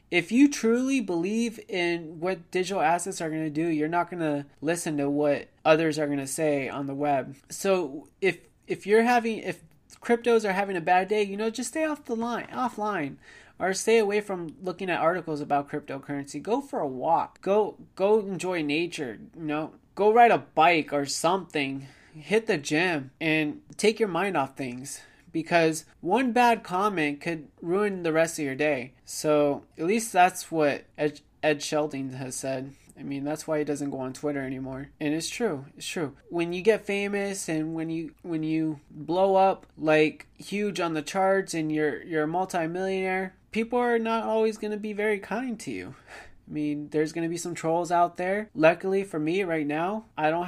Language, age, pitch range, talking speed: English, 20-39, 150-195 Hz, 195 wpm